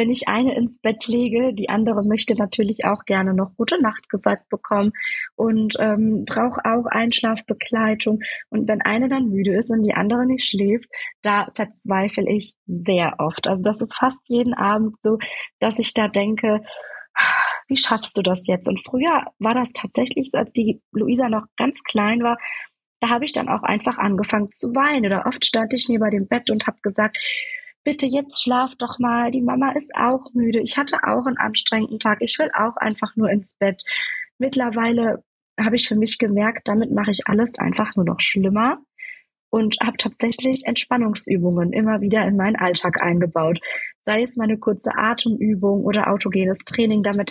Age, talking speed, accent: 20-39, 180 wpm, German